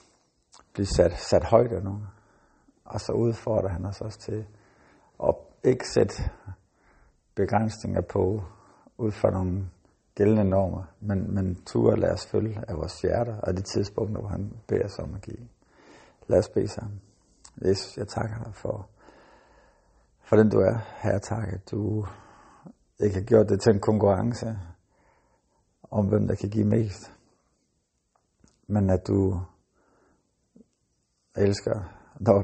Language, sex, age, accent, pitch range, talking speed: Danish, male, 60-79, native, 95-110 Hz, 145 wpm